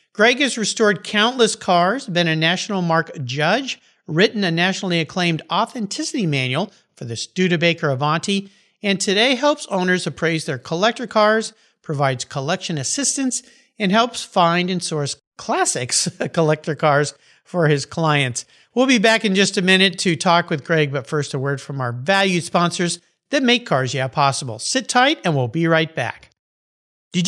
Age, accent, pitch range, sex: 50-69, American, 125-195 Hz, male